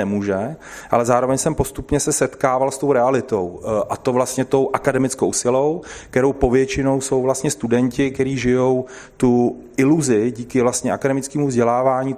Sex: male